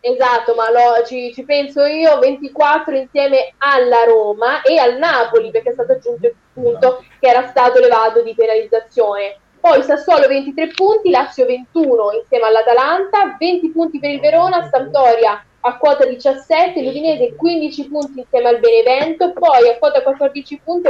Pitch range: 245-335 Hz